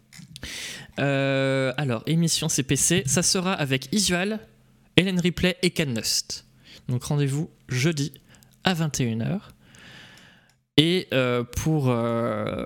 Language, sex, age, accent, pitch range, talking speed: French, male, 20-39, French, 130-175 Hz, 105 wpm